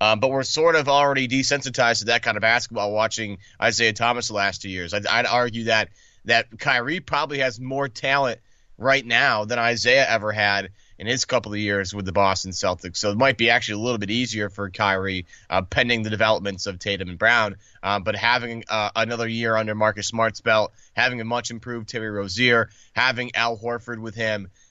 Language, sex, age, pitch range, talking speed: English, male, 30-49, 100-120 Hz, 205 wpm